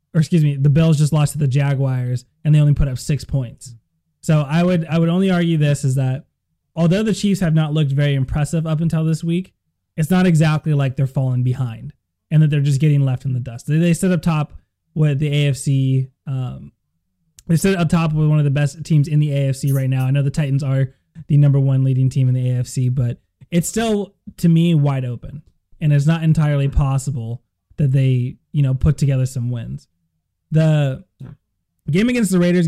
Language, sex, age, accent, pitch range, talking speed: English, male, 20-39, American, 130-155 Hz, 215 wpm